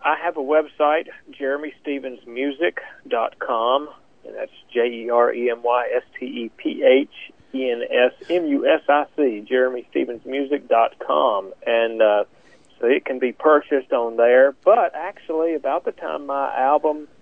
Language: English